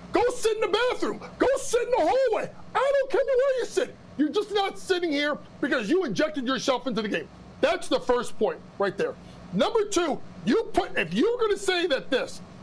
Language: English